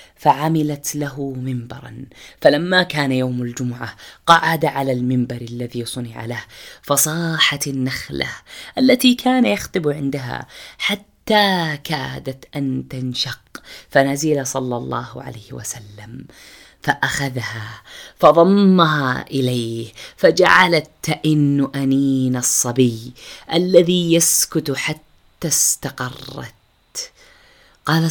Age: 20-39